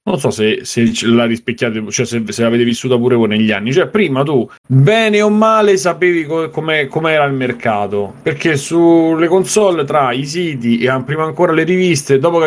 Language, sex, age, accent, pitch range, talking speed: Italian, male, 30-49, native, 115-155 Hz, 190 wpm